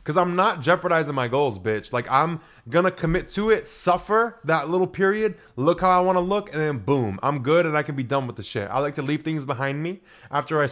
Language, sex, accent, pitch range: English, male, American, 130-175 Hz